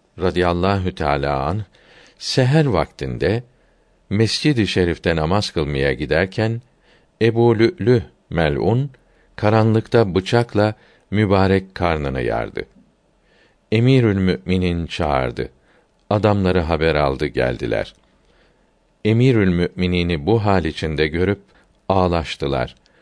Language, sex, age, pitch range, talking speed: Turkish, male, 50-69, 85-110 Hz, 85 wpm